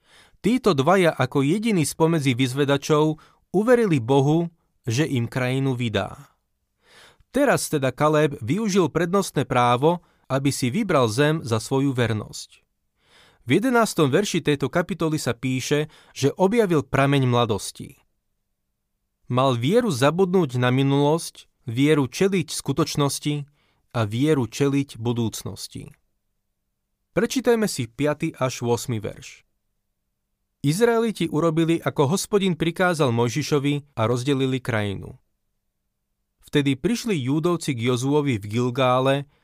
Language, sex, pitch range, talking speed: Slovak, male, 130-165 Hz, 105 wpm